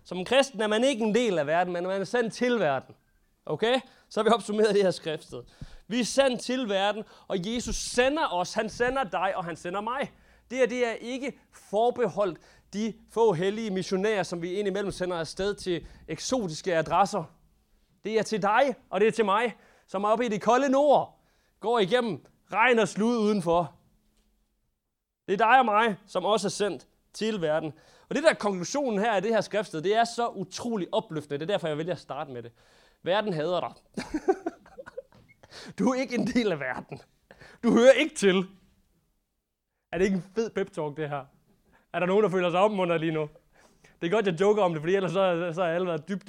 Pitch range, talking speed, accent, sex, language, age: 180-230 Hz, 205 wpm, native, male, Danish, 30-49